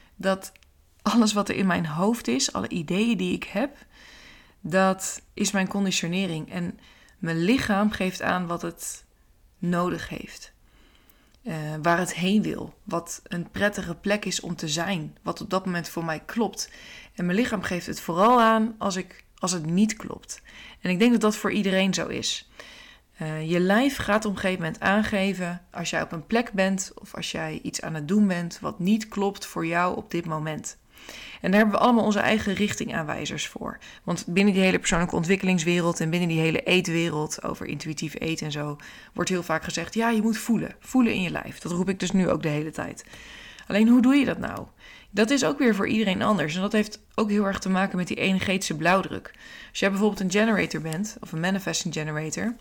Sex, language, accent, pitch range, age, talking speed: female, Dutch, Dutch, 170-215 Hz, 20-39, 205 wpm